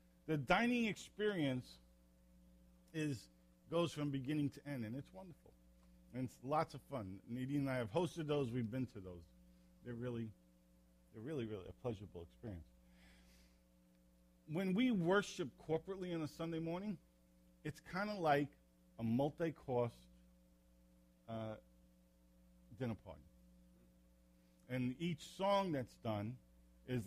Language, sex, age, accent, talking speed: English, male, 50-69, American, 130 wpm